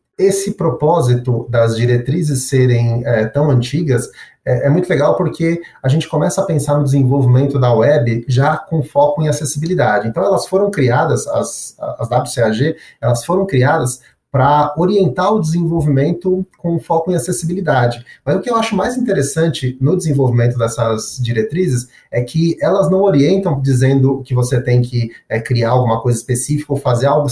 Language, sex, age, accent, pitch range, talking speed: Portuguese, male, 30-49, Brazilian, 125-160 Hz, 160 wpm